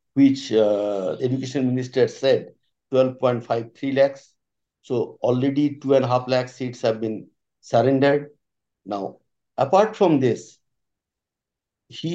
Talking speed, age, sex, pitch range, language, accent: 100 wpm, 60-79, male, 125-165 Hz, English, Indian